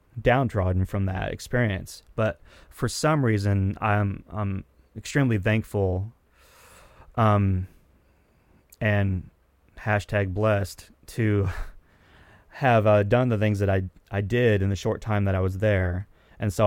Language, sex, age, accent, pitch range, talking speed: English, male, 30-49, American, 95-115 Hz, 130 wpm